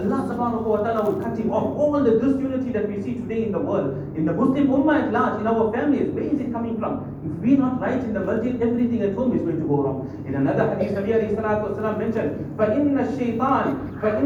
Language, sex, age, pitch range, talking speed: English, male, 50-69, 210-270 Hz, 230 wpm